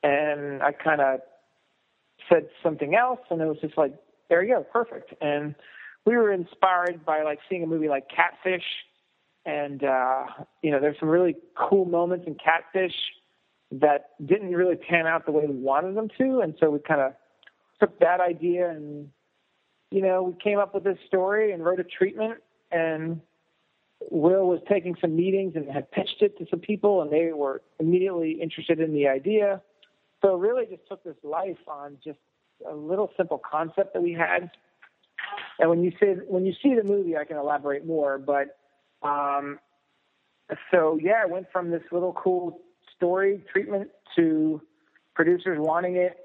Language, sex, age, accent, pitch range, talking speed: English, male, 40-59, American, 150-185 Hz, 175 wpm